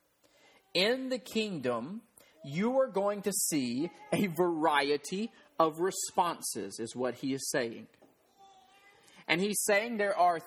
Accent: American